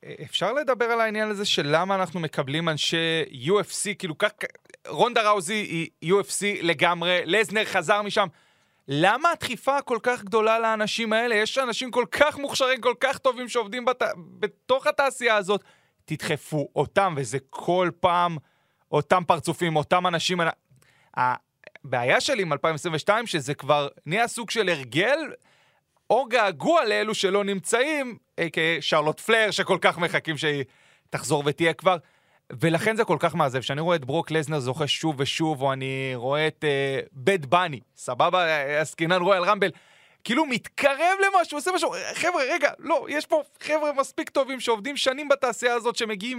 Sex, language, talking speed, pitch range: male, Hebrew, 150 wpm, 160-235 Hz